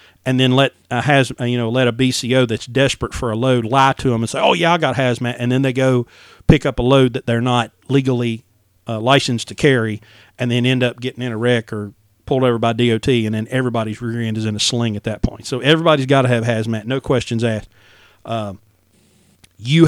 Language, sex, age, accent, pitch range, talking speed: English, male, 40-59, American, 110-135 Hz, 220 wpm